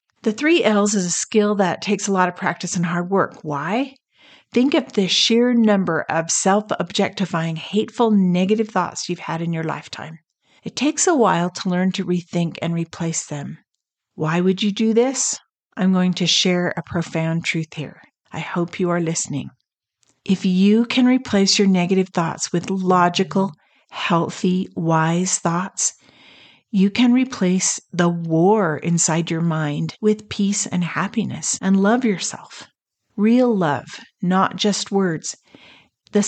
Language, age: English, 50-69